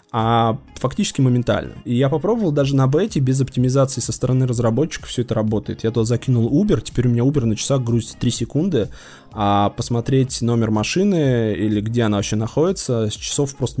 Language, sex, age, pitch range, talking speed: Russian, male, 20-39, 110-140 Hz, 185 wpm